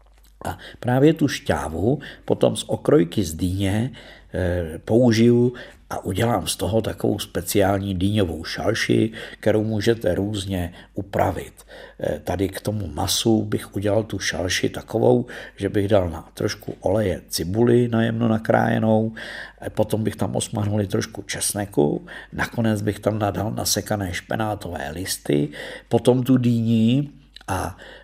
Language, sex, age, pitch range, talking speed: Czech, male, 50-69, 90-110 Hz, 120 wpm